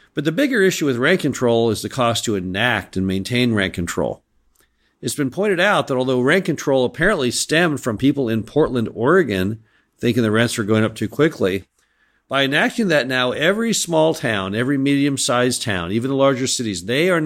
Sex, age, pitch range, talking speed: male, 50-69, 105-135 Hz, 190 wpm